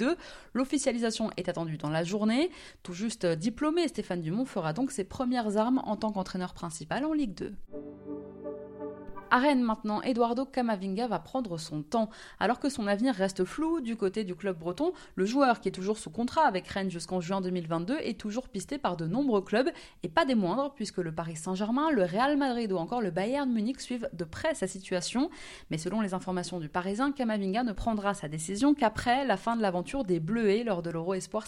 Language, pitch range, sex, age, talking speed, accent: French, 185-255 Hz, female, 20-39, 200 wpm, French